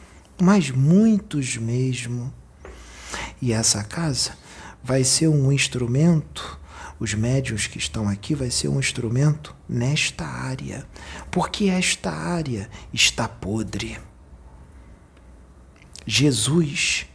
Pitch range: 85-130 Hz